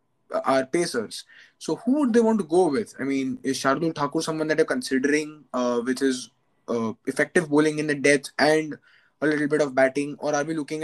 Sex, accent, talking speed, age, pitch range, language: male, Indian, 210 wpm, 20-39, 140-175 Hz, English